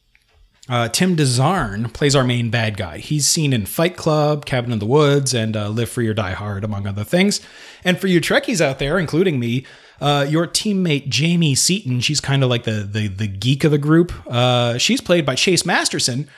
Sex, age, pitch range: male, 30-49, 120-180 Hz